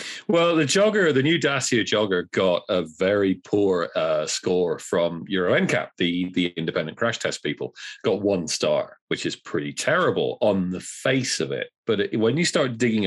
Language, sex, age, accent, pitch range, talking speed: English, male, 40-59, British, 90-145 Hz, 185 wpm